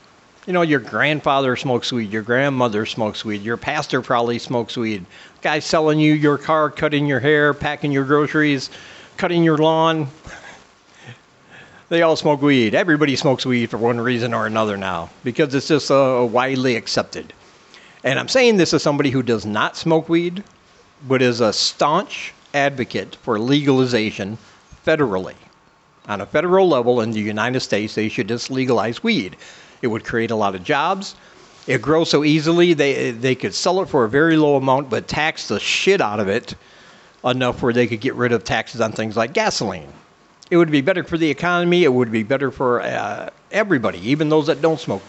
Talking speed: 185 wpm